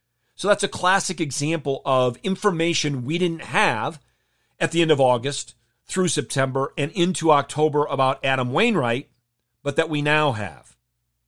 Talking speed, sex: 150 wpm, male